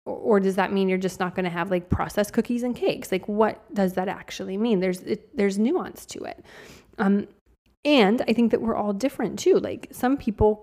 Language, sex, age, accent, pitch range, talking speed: English, female, 20-39, American, 195-240 Hz, 220 wpm